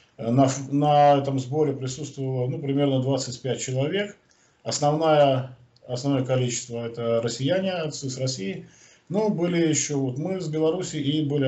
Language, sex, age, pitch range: Russian, male, 40-59, 120-145 Hz